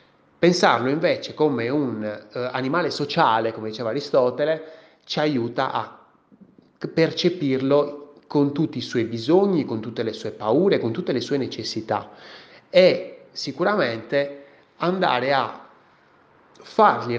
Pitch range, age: 110-150 Hz, 30-49